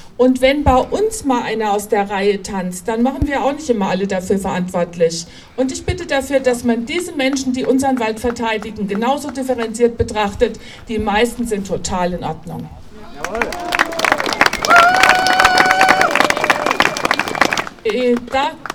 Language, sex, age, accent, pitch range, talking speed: German, female, 60-79, German, 235-275 Hz, 130 wpm